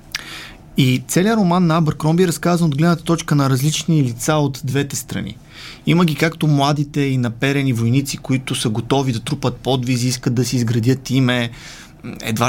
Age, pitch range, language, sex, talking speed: 30-49, 120-150 Hz, Bulgarian, male, 175 wpm